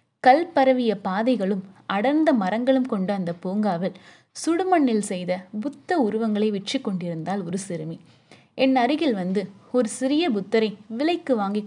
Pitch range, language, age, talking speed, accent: 195-260 Hz, English, 20-39, 120 wpm, Indian